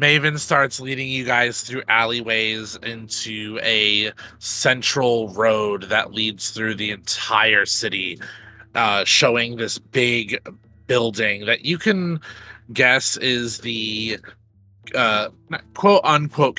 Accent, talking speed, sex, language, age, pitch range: American, 110 wpm, male, English, 30-49, 105-125 Hz